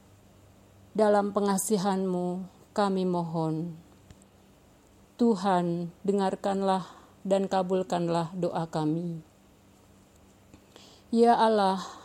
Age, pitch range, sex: 50-69, 180-225 Hz, female